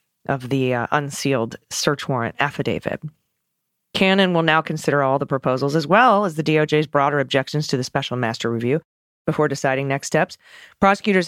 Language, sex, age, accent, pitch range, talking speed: English, female, 30-49, American, 140-175 Hz, 165 wpm